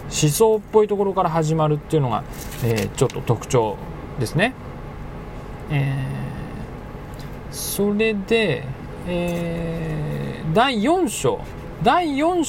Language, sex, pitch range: Japanese, male, 145-230 Hz